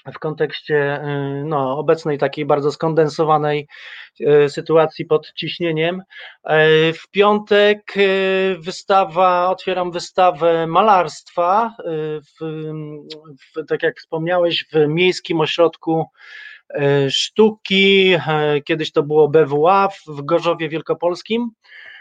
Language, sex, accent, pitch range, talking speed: Polish, male, native, 150-185 Hz, 85 wpm